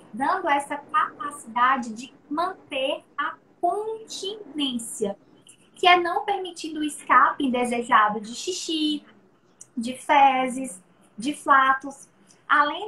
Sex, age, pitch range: female, 20-39, 250-315 Hz